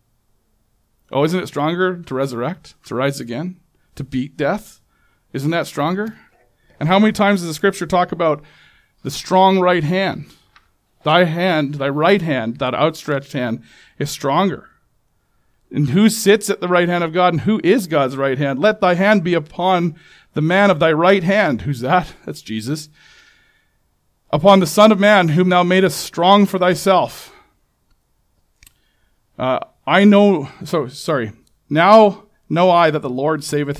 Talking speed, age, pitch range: 160 wpm, 40-59, 145-185 Hz